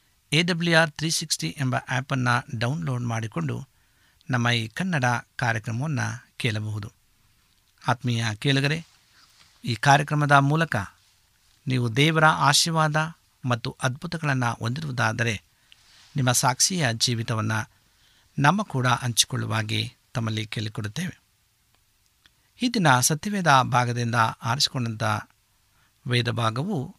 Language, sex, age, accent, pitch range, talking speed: Kannada, male, 60-79, native, 110-145 Hz, 85 wpm